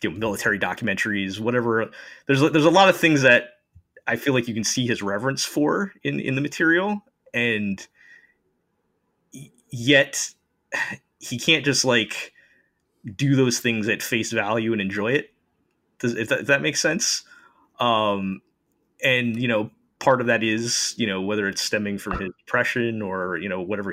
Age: 20-39